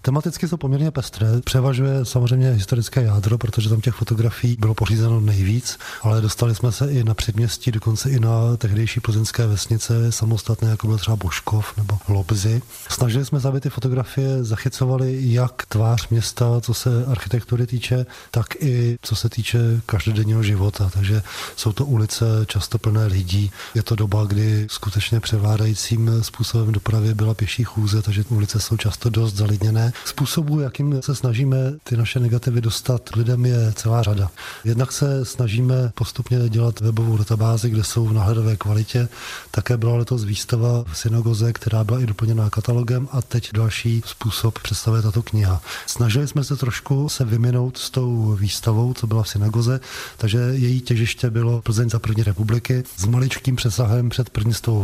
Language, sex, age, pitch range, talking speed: Czech, male, 20-39, 110-125 Hz, 165 wpm